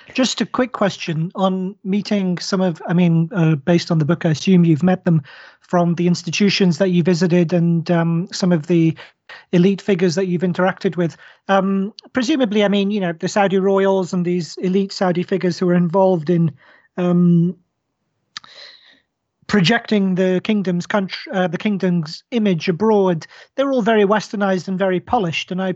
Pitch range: 175-200 Hz